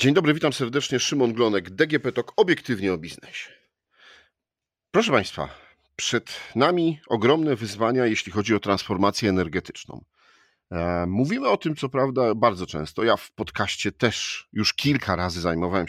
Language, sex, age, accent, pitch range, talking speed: Polish, male, 40-59, native, 90-115 Hz, 140 wpm